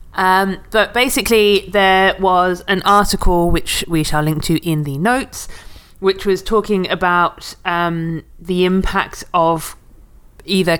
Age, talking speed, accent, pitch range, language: 20-39, 135 wpm, British, 140-175 Hz, English